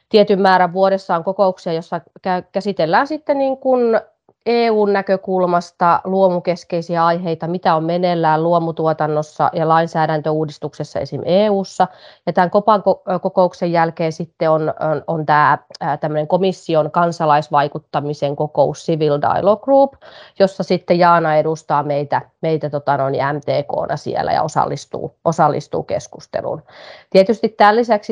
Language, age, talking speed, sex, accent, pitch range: Finnish, 30-49, 115 wpm, female, native, 160-190 Hz